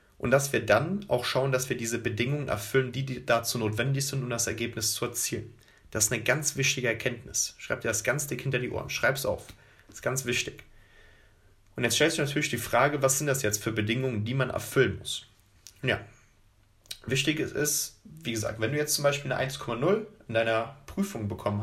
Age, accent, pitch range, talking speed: 30-49, German, 110-135 Hz, 210 wpm